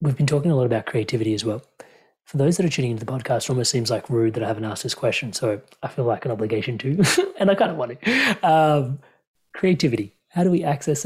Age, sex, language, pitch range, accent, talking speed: 30-49, male, English, 125-150 Hz, Australian, 255 wpm